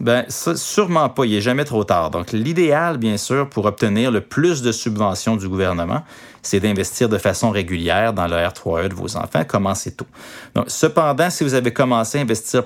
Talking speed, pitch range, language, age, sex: 200 wpm, 100-130 Hz, French, 30-49, male